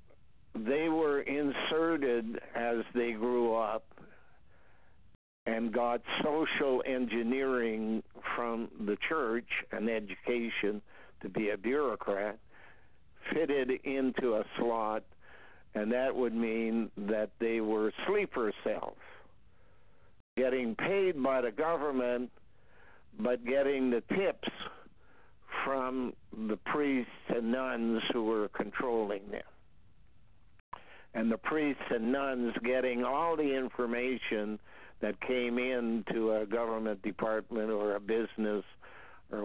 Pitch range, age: 110-125 Hz, 60-79